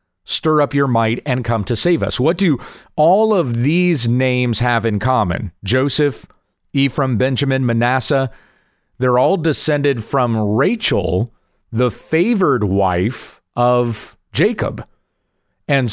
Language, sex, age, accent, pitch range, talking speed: English, male, 40-59, American, 115-145 Hz, 125 wpm